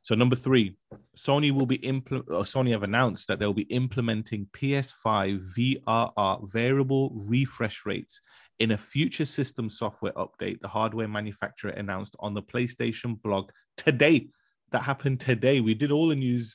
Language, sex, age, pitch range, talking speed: English, male, 30-49, 105-130 Hz, 150 wpm